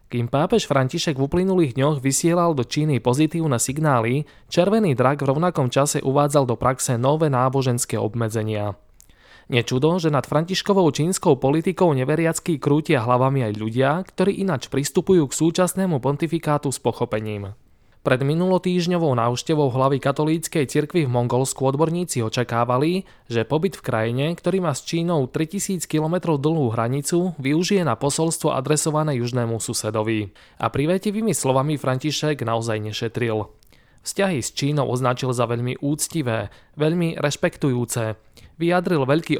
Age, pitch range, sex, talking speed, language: 20-39, 125-160 Hz, male, 130 wpm, Slovak